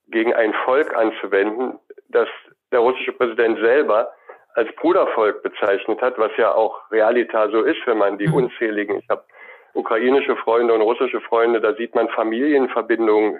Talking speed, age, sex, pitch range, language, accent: 150 wpm, 50-69, male, 110-155 Hz, German, German